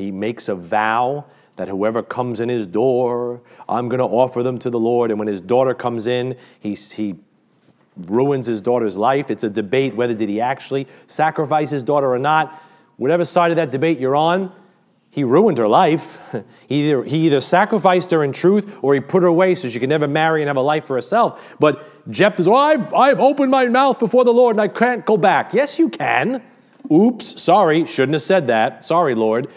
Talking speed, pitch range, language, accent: 205 wpm, 120-180 Hz, English, American